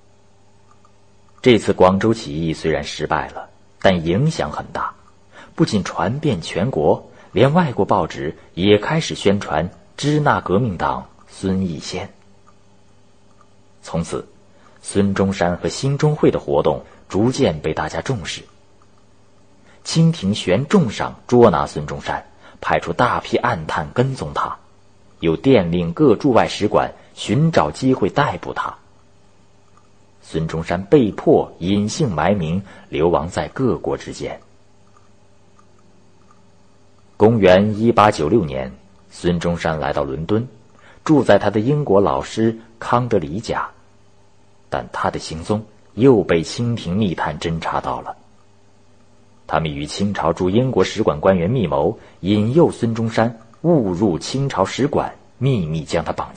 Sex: male